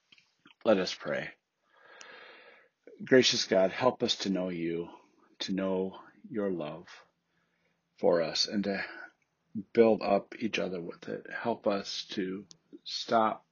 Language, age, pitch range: English, 40-59, 85-105 Hz